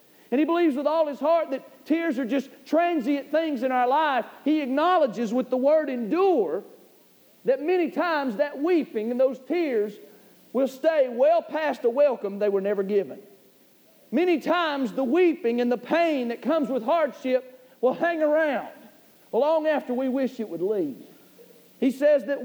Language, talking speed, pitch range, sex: English, 170 wpm, 240-305 Hz, male